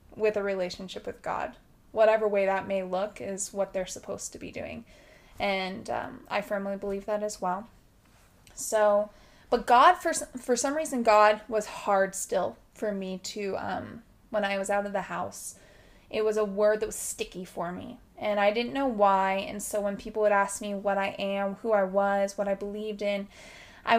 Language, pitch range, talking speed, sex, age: English, 195-250 Hz, 200 wpm, female, 20-39